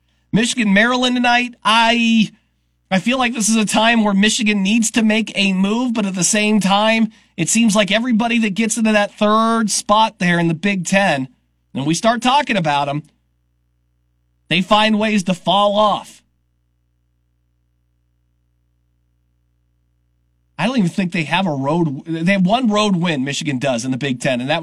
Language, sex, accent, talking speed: English, male, American, 170 wpm